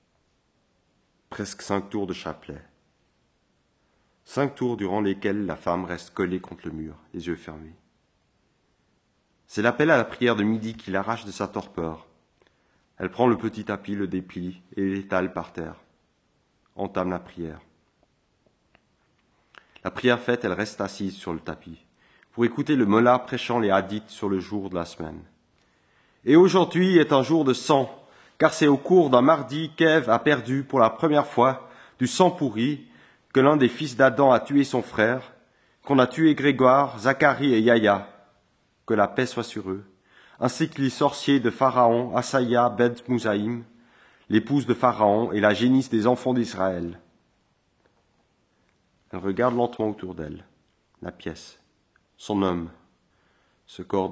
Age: 30-49